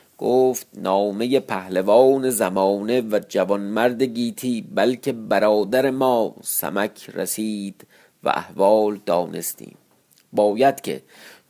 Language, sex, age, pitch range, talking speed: Persian, male, 50-69, 105-135 Hz, 90 wpm